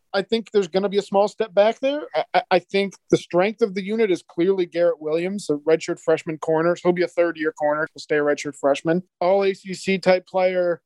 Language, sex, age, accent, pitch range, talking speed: English, male, 40-59, American, 160-180 Hz, 220 wpm